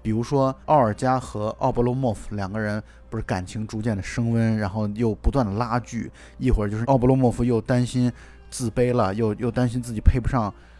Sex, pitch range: male, 105-140 Hz